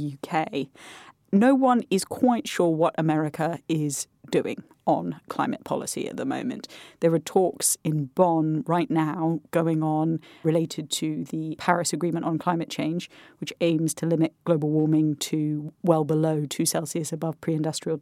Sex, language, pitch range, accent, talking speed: female, English, 160-180 Hz, British, 155 wpm